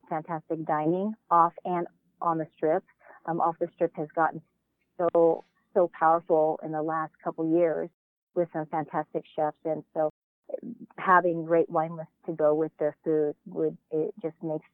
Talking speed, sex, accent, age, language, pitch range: 165 wpm, female, American, 40-59, English, 160-185 Hz